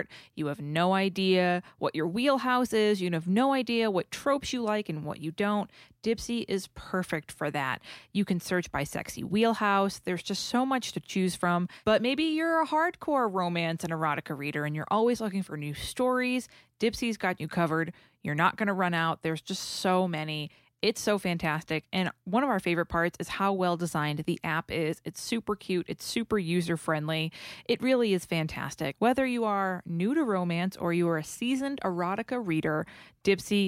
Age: 20-39